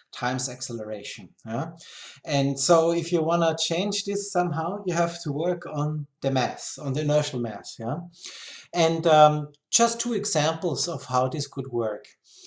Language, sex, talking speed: English, male, 165 wpm